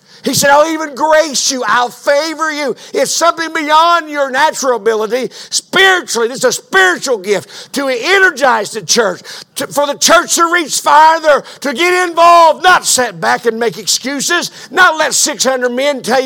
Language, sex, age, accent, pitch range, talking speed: English, male, 50-69, American, 195-320 Hz, 165 wpm